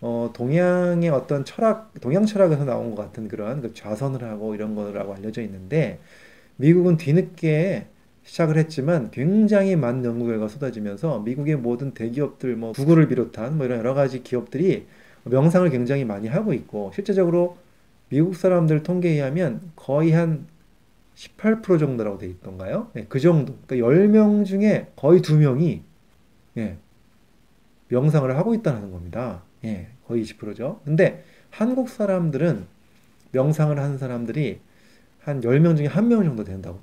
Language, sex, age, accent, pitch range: Korean, male, 20-39, native, 115-170 Hz